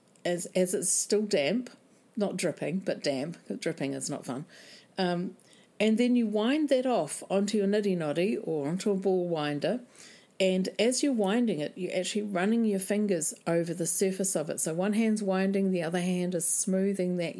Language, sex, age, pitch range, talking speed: English, female, 50-69, 175-210 Hz, 185 wpm